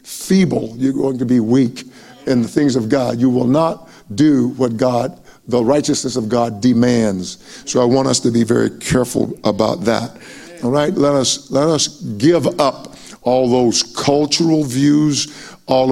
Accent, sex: American, male